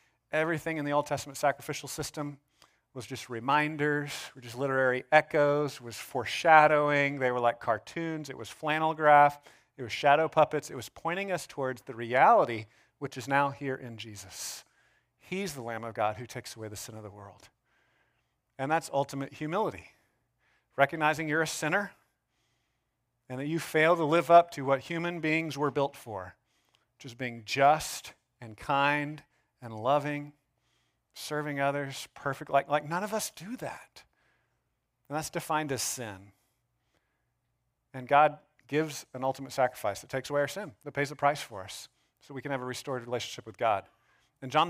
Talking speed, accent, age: 170 wpm, American, 40-59